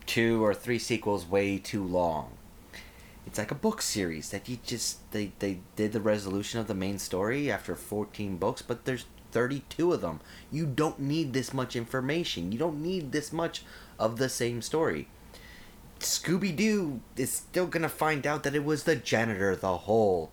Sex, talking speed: male, 175 wpm